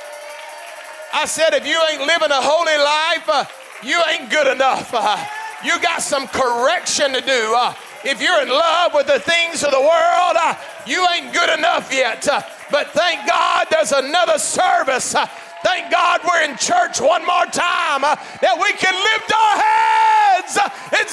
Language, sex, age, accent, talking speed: English, male, 40-59, American, 175 wpm